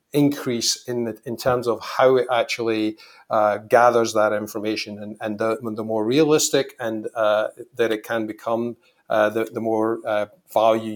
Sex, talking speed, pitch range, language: male, 170 wpm, 110-130 Hz, English